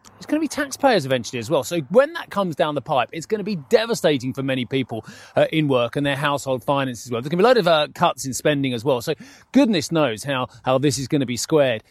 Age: 30-49